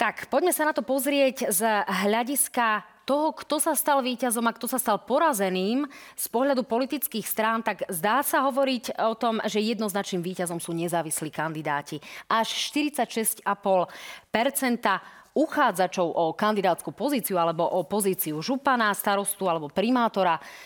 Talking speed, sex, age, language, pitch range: 135 wpm, female, 30-49, Slovak, 185-250 Hz